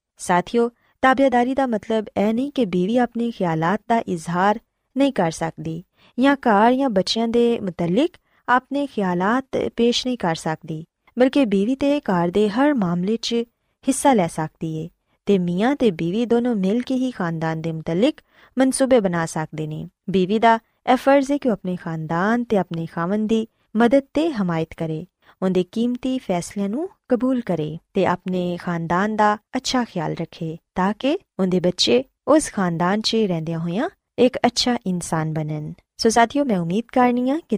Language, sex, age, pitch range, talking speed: Punjabi, female, 20-39, 175-250 Hz, 165 wpm